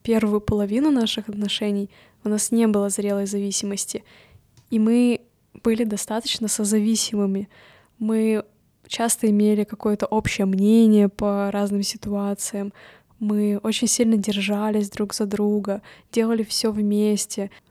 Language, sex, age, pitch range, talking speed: Russian, female, 20-39, 205-220 Hz, 115 wpm